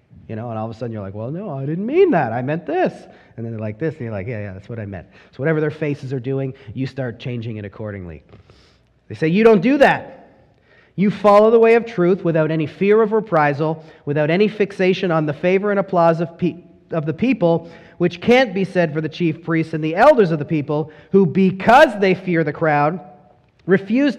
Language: English